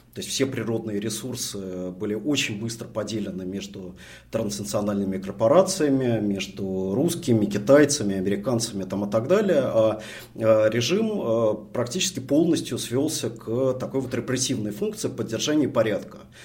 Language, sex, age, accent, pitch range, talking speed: Russian, male, 30-49, native, 95-120 Hz, 115 wpm